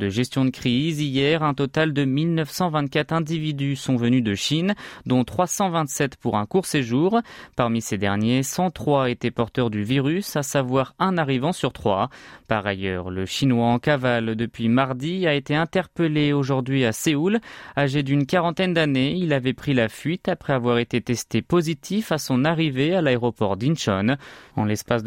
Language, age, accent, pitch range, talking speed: French, 20-39, French, 120-160 Hz, 170 wpm